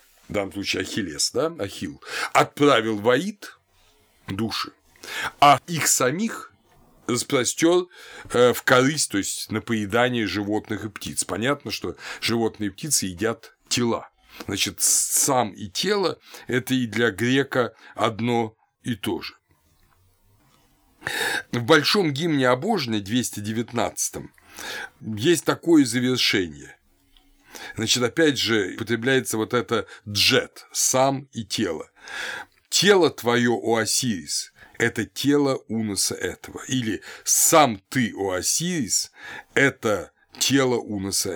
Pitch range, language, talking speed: 105-135 Hz, Russian, 105 wpm